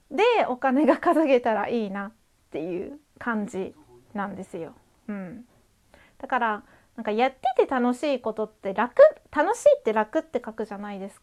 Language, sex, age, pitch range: Japanese, female, 30-49, 215-315 Hz